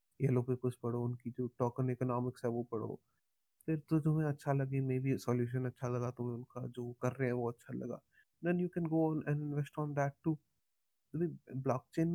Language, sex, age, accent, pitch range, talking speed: Hindi, male, 20-39, native, 120-135 Hz, 80 wpm